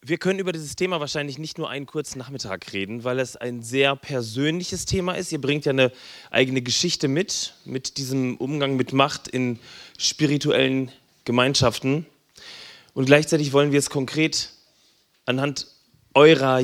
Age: 30-49